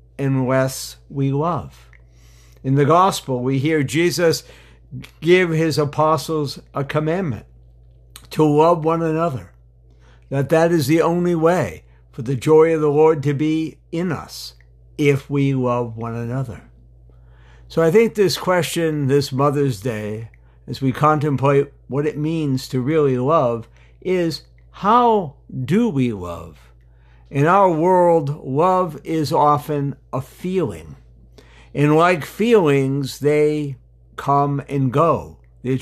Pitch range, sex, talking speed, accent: 115-160 Hz, male, 130 wpm, American